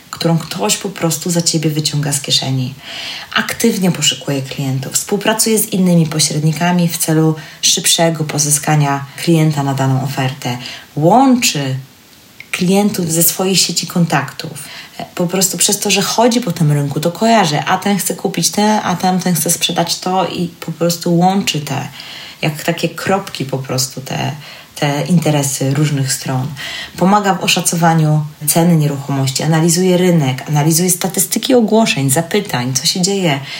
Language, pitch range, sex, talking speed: Polish, 140-180 Hz, female, 145 wpm